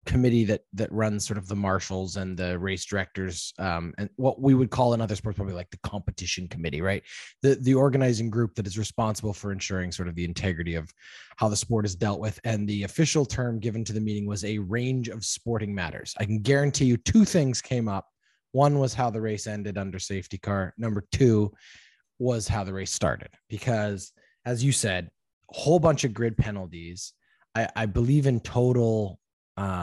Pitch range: 100-130 Hz